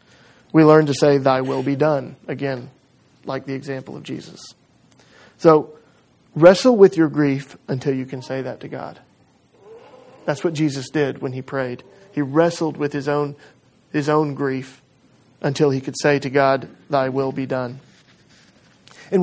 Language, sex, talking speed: English, male, 160 wpm